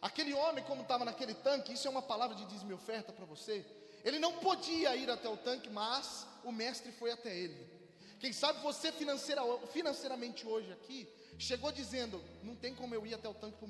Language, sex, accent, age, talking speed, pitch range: Portuguese, male, Brazilian, 20-39, 195 wpm, 250-320 Hz